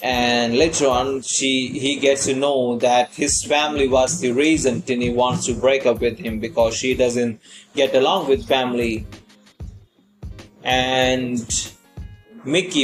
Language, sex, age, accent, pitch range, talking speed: Hindi, male, 30-49, native, 120-135 Hz, 145 wpm